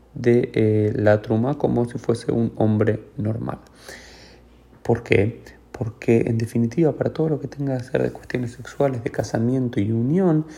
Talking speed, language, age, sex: 165 wpm, Spanish, 30-49, male